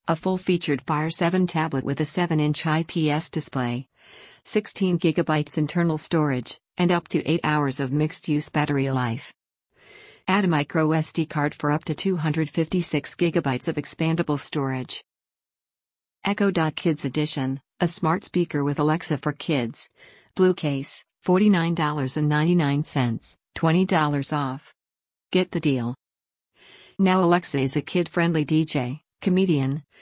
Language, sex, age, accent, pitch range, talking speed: English, female, 50-69, American, 140-175 Hz, 115 wpm